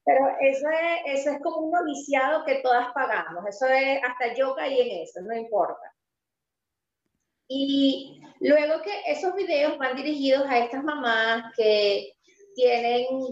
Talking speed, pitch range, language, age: 150 wpm, 235-290 Hz, Spanish, 30-49